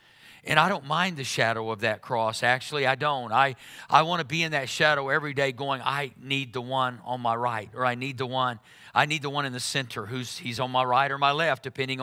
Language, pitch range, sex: English, 120-150 Hz, male